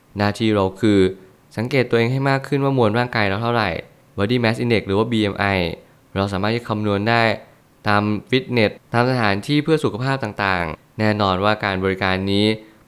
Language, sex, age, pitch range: Thai, male, 20-39, 100-120 Hz